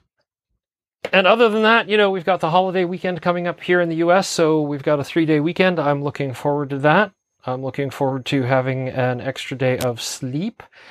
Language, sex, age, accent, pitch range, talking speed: English, male, 40-59, American, 135-170 Hz, 210 wpm